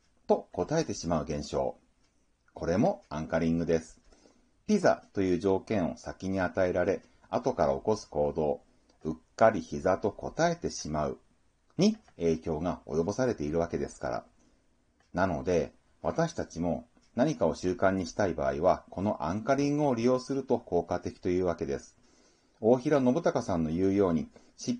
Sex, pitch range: male, 90-135 Hz